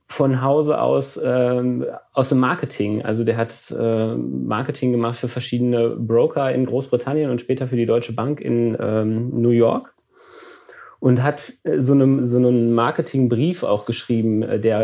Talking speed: 155 wpm